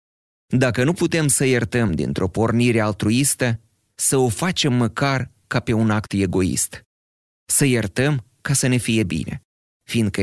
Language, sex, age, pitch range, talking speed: Romanian, male, 30-49, 95-125 Hz, 145 wpm